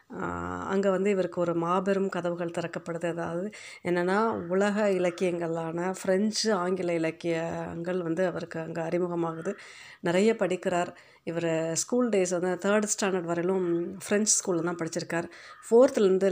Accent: native